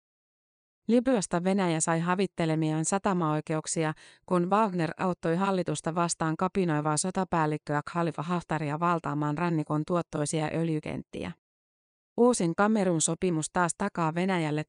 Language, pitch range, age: Finnish, 155-185 Hz, 30-49